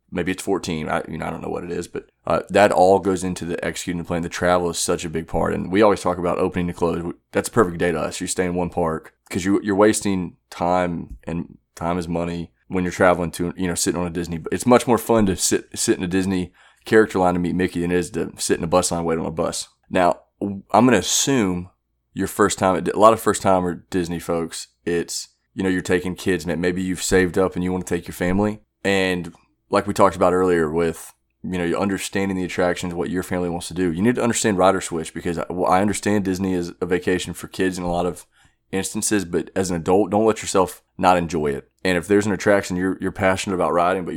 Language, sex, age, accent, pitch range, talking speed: English, male, 20-39, American, 85-95 Hz, 260 wpm